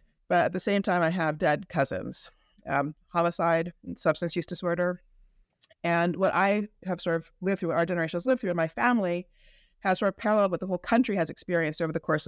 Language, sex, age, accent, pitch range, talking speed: English, female, 30-49, American, 160-190 Hz, 215 wpm